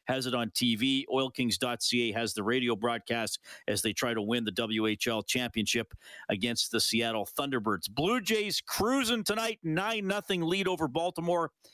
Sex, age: male, 40-59